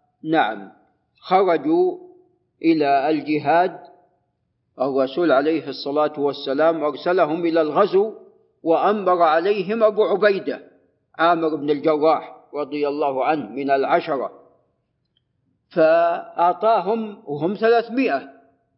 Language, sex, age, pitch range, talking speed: Arabic, male, 50-69, 155-230 Hz, 85 wpm